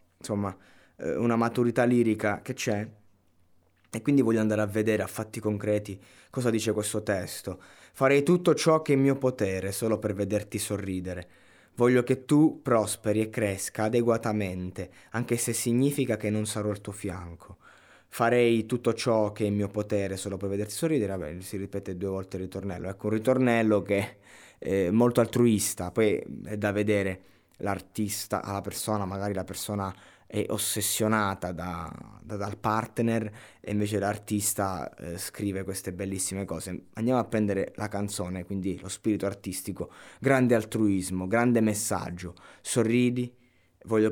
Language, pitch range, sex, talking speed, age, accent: Italian, 95-115 Hz, male, 150 wpm, 20-39, native